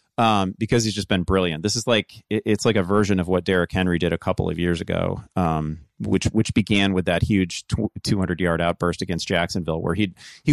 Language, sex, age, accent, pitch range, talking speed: English, male, 30-49, American, 85-115 Hz, 215 wpm